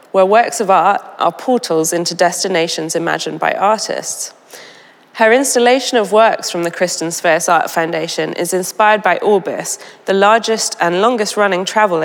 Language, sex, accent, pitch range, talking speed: English, female, British, 180-215 Hz, 150 wpm